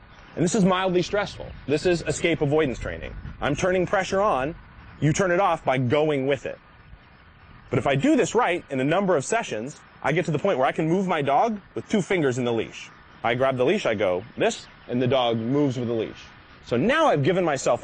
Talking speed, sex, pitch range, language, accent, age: 230 wpm, male, 125-170 Hz, English, American, 30-49